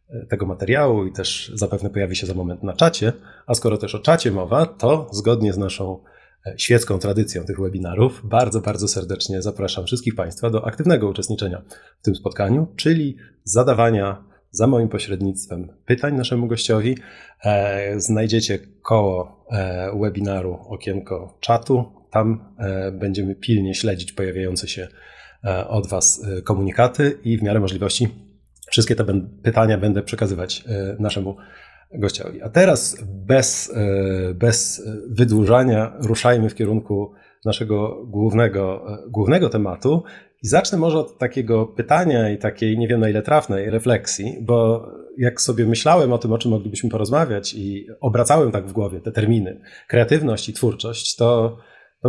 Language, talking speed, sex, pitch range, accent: Polish, 135 wpm, male, 100-120 Hz, native